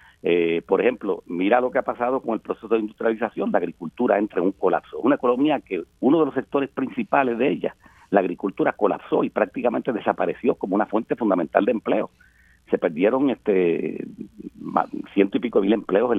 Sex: male